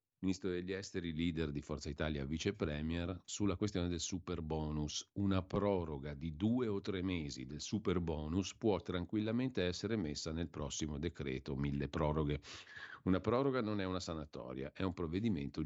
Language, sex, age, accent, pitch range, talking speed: Italian, male, 50-69, native, 80-100 Hz, 155 wpm